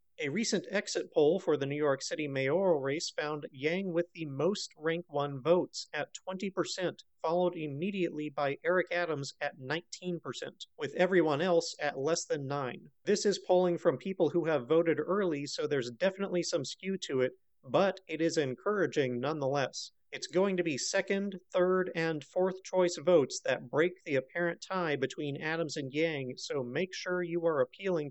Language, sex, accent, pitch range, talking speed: English, male, American, 150-185 Hz, 175 wpm